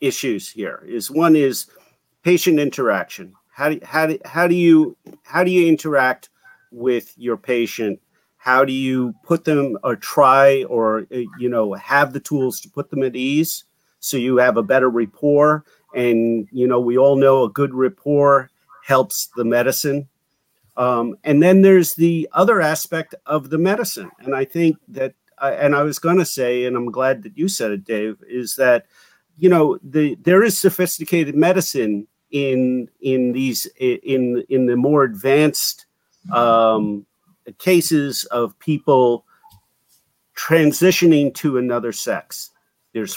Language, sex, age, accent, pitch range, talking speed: English, male, 50-69, American, 125-160 Hz, 155 wpm